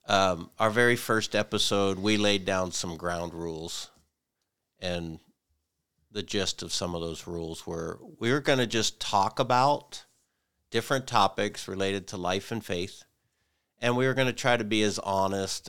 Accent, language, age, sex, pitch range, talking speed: American, English, 50-69, male, 85-105 Hz, 165 wpm